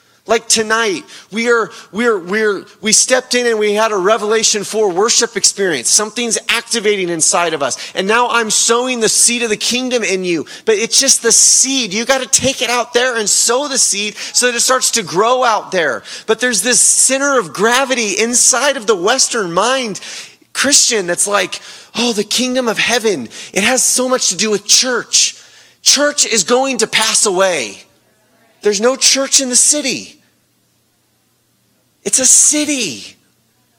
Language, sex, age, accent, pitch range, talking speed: English, male, 30-49, American, 210-255 Hz, 175 wpm